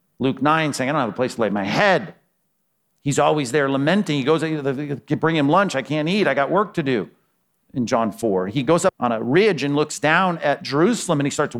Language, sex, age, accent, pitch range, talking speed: English, male, 50-69, American, 145-190 Hz, 240 wpm